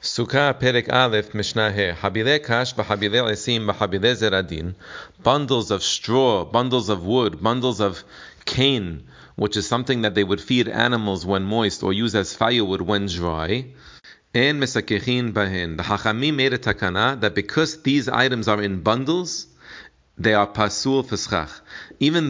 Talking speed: 110 wpm